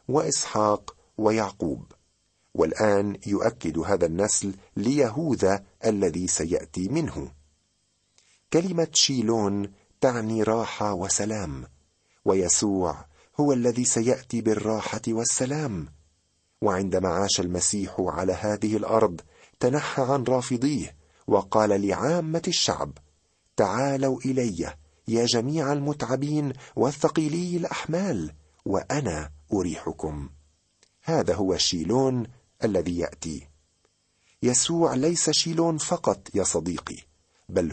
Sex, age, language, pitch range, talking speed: male, 50-69, Arabic, 90-130 Hz, 85 wpm